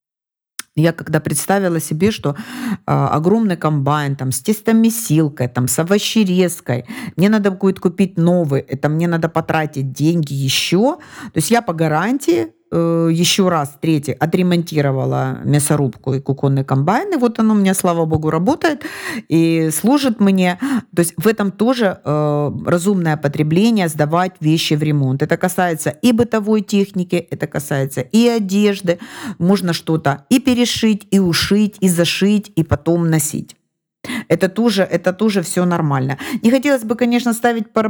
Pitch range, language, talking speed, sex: 155-215 Hz, Russian, 145 wpm, female